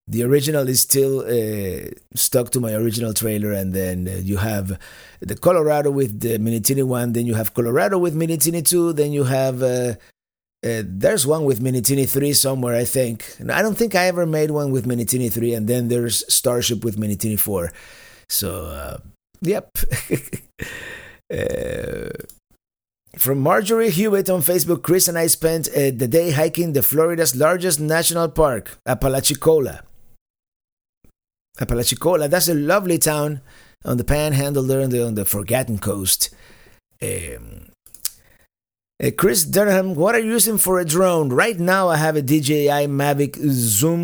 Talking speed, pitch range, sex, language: 160 wpm, 120-165 Hz, male, English